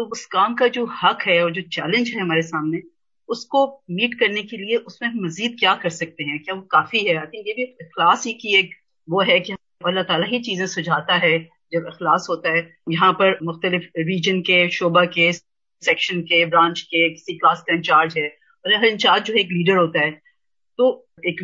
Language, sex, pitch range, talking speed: Urdu, female, 170-235 Hz, 210 wpm